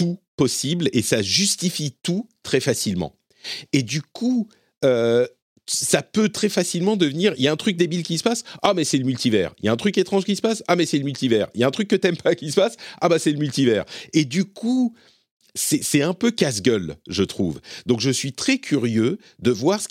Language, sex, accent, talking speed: French, male, French, 235 wpm